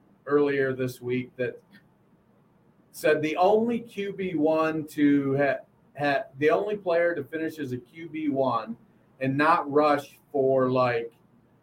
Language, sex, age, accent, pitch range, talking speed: English, male, 50-69, American, 125-155 Hz, 135 wpm